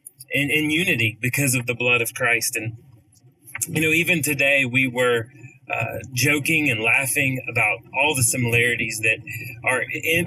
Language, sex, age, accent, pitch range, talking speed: English, male, 30-49, American, 120-140 Hz, 160 wpm